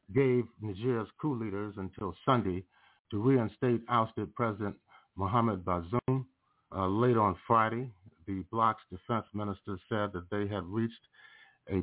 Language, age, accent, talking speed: English, 50-69, American, 130 wpm